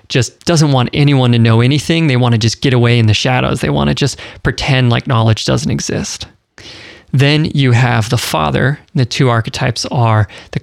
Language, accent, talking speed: English, American, 200 wpm